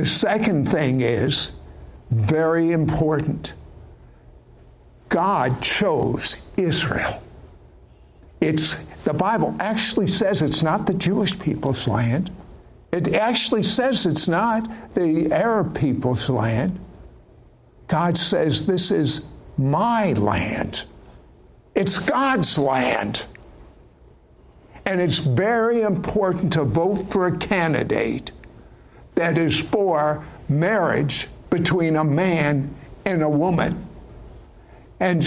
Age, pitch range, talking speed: 60-79, 135-185 Hz, 100 wpm